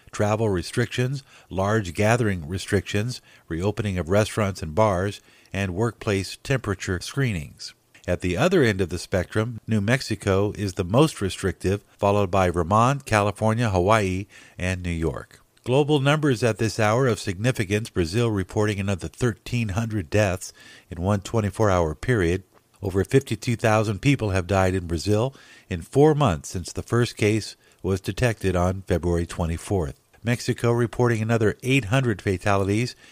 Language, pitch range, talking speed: English, 95-120 Hz, 135 wpm